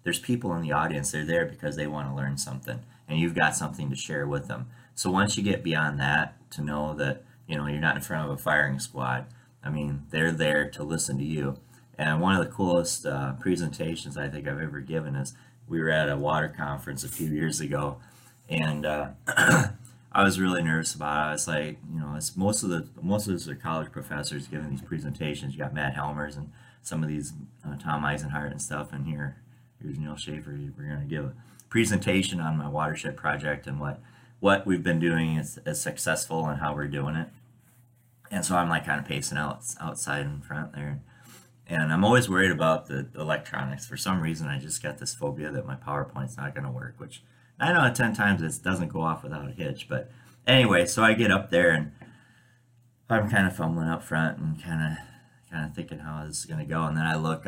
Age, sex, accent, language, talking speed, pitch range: 30-49, male, American, English, 225 wpm, 75-95 Hz